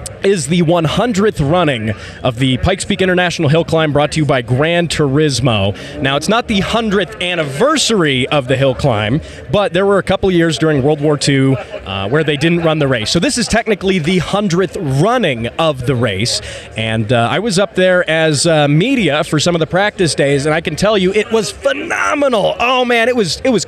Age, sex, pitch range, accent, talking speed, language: 20-39, male, 145-195 Hz, American, 210 wpm, English